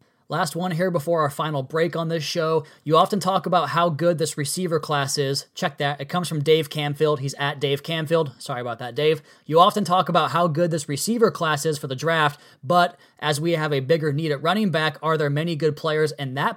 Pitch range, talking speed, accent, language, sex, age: 140-165 Hz, 235 wpm, American, English, male, 20-39